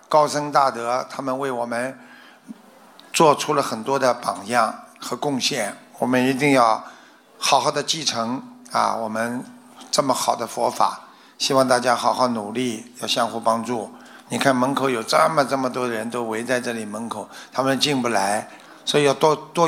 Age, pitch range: 50-69, 120-145 Hz